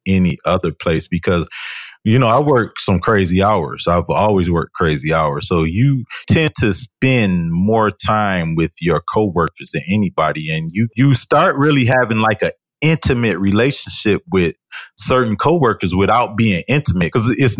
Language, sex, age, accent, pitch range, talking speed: English, male, 30-49, American, 90-125 Hz, 155 wpm